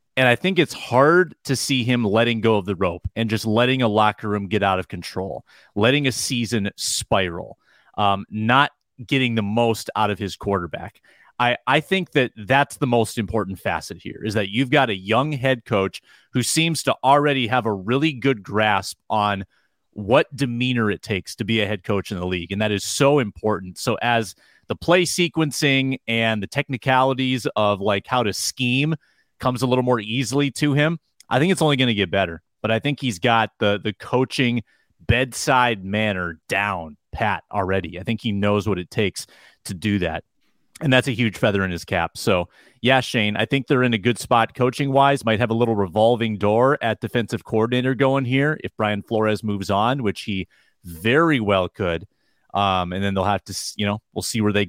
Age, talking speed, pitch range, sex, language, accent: 30-49, 200 wpm, 105-130 Hz, male, English, American